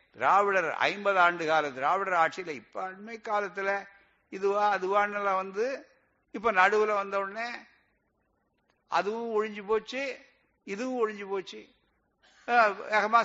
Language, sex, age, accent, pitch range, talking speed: Tamil, male, 60-79, native, 160-205 Hz, 105 wpm